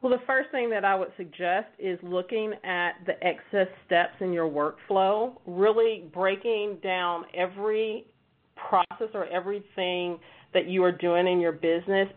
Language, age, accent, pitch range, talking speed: English, 40-59, American, 170-200 Hz, 155 wpm